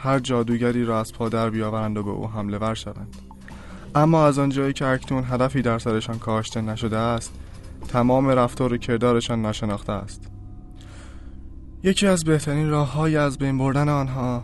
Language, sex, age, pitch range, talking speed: Persian, male, 20-39, 105-130 Hz, 150 wpm